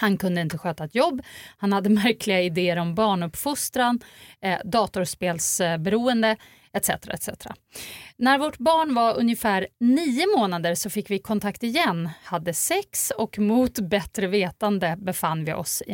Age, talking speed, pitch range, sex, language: 30-49, 130 wpm, 180-235 Hz, female, English